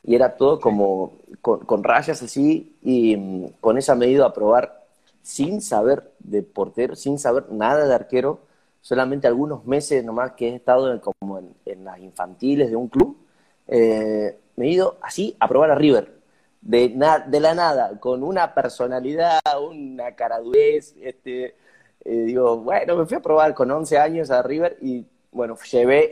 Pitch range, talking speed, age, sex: 110-150 Hz, 170 wpm, 30-49, male